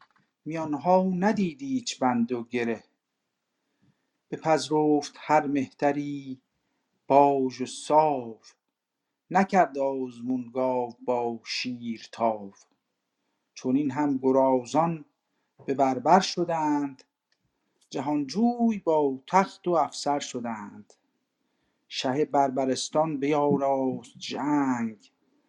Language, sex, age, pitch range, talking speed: Persian, male, 50-69, 130-165 Hz, 80 wpm